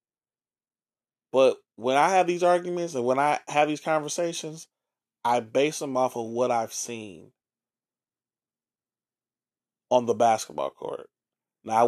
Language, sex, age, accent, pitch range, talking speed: English, male, 30-49, American, 115-155 Hz, 125 wpm